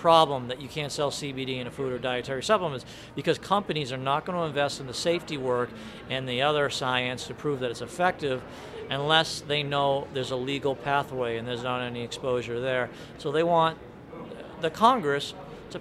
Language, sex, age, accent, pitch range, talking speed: English, male, 50-69, American, 125-150 Hz, 195 wpm